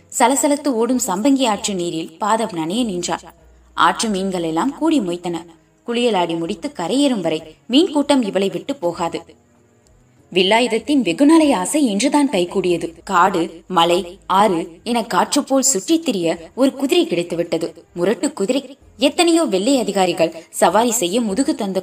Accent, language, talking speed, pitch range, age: native, Tamil, 105 wpm, 175-270 Hz, 20-39